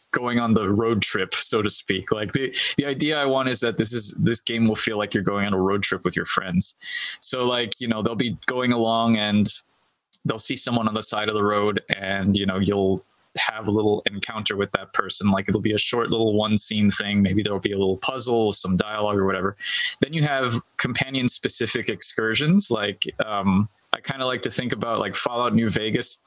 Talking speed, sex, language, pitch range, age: 225 wpm, male, English, 105-125 Hz, 20-39